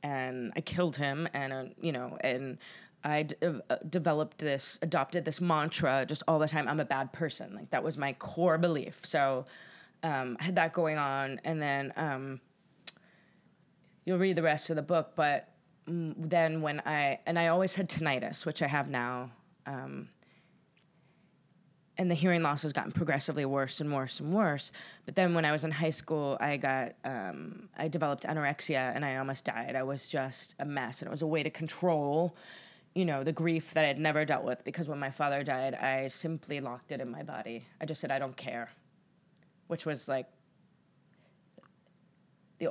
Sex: female